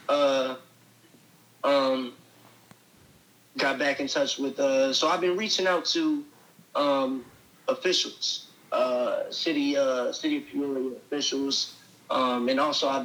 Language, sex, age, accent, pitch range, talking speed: English, male, 30-49, American, 130-180 Hz, 115 wpm